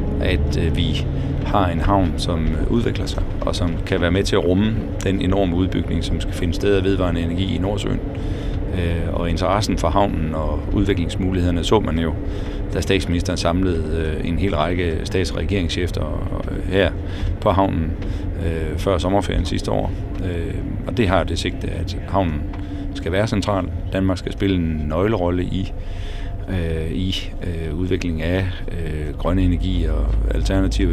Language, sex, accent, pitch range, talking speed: Danish, male, native, 85-95 Hz, 145 wpm